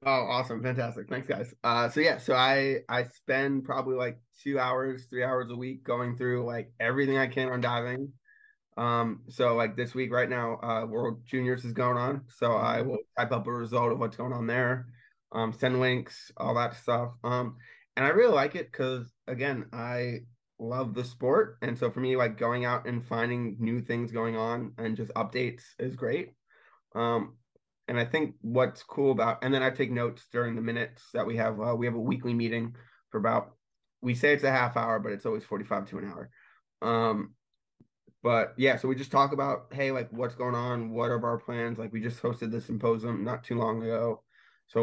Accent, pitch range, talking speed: American, 115-130 Hz, 210 wpm